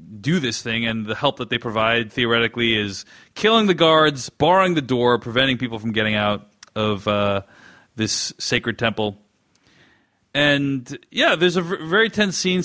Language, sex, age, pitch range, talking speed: English, male, 30-49, 110-145 Hz, 160 wpm